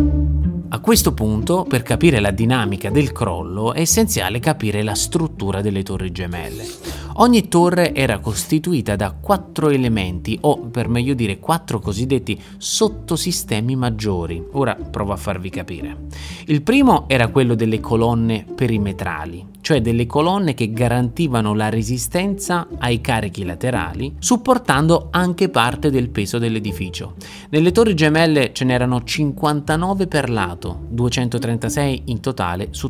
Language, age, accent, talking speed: Italian, 20-39, native, 130 wpm